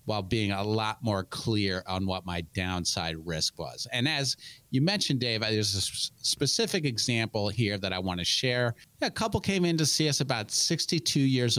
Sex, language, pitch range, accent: male, English, 100-140 Hz, American